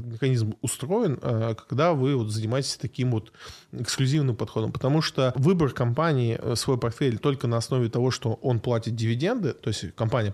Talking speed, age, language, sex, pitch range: 150 wpm, 20-39, Russian, male, 115-135 Hz